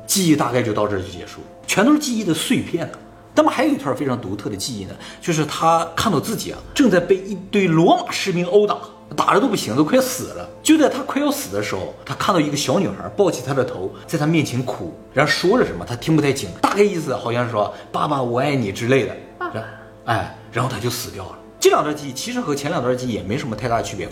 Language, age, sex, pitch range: Chinese, 30-49, male, 110-165 Hz